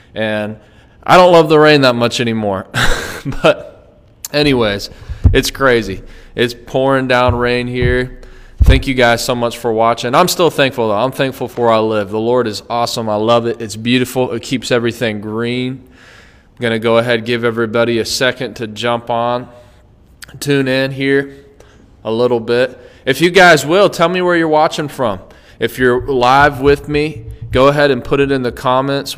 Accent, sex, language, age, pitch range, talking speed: American, male, English, 20-39, 115-140 Hz, 180 wpm